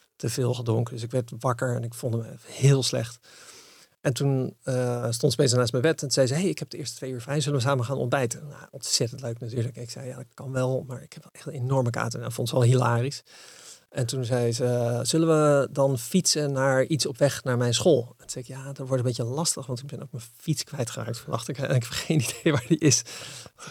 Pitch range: 120-145 Hz